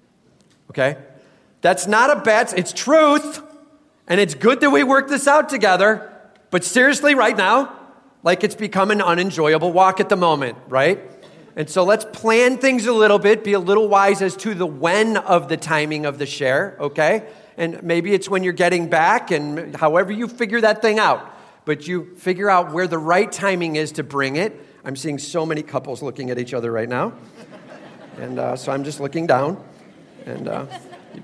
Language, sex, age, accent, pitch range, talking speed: English, male, 40-59, American, 140-195 Hz, 190 wpm